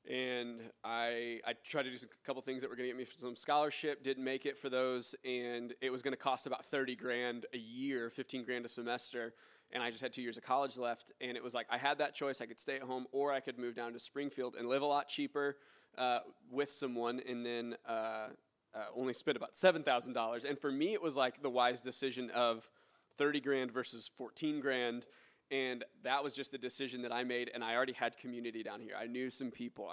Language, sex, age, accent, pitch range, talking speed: English, male, 20-39, American, 120-135 Hz, 235 wpm